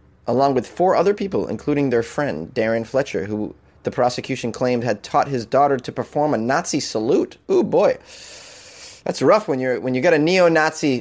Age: 30-49